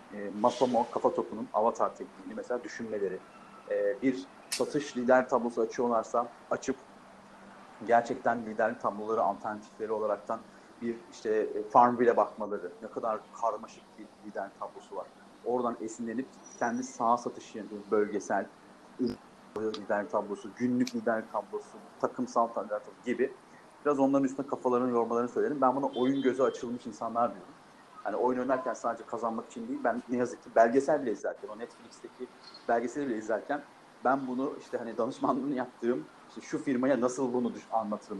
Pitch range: 115-135 Hz